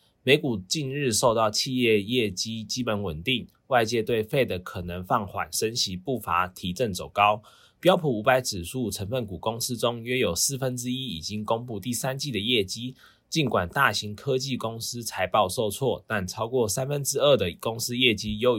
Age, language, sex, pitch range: 20-39, Chinese, male, 105-125 Hz